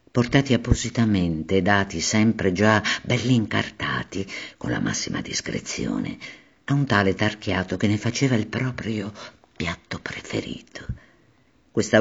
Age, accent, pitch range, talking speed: 50-69, native, 85-115 Hz, 115 wpm